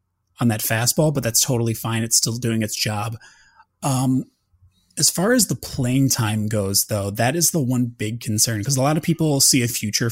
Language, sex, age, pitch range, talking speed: English, male, 30-49, 105-135 Hz, 210 wpm